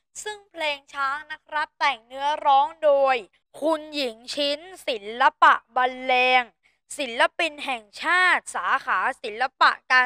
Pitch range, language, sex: 255-315 Hz, Thai, female